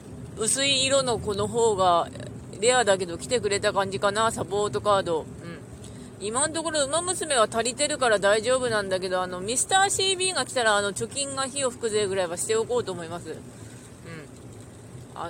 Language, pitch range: Japanese, 170-245 Hz